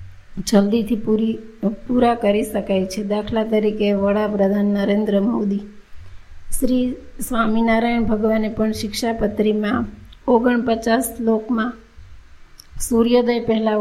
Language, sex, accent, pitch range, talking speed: Gujarati, female, native, 210-230 Hz, 95 wpm